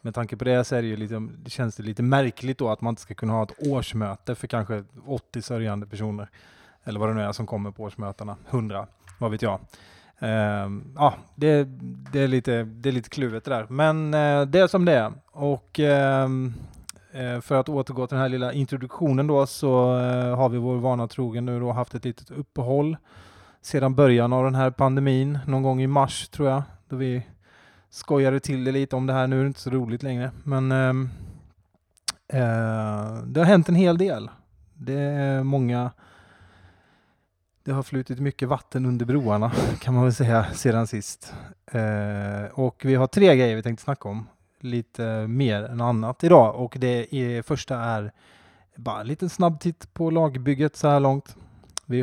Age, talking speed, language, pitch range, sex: 20-39, 195 wpm, Swedish, 110-135 Hz, male